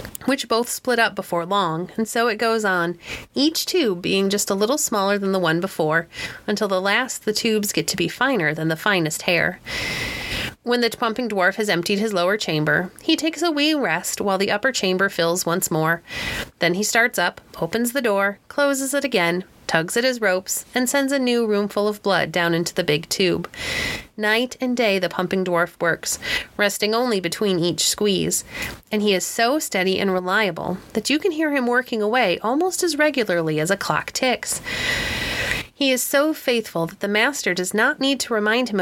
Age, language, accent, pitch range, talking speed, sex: 30-49, English, American, 185-250 Hz, 200 wpm, female